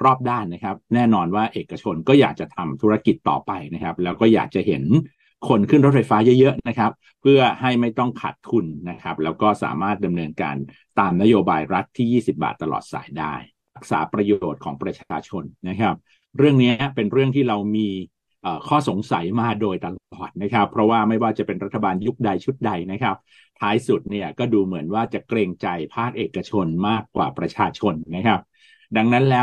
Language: Thai